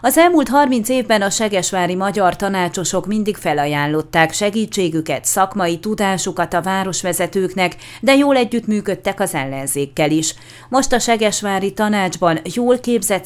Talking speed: 125 wpm